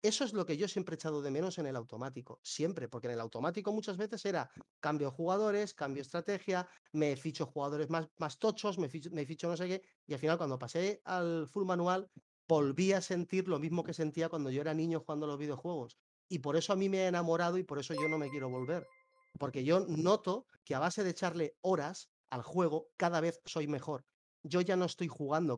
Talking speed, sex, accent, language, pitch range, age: 230 wpm, male, Spanish, Spanish, 135-180 Hz, 30-49